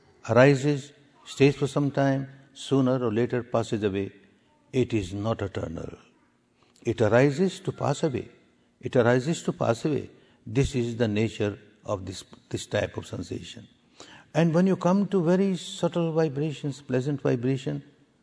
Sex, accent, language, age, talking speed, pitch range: male, Indian, English, 60-79, 145 wpm, 125-170 Hz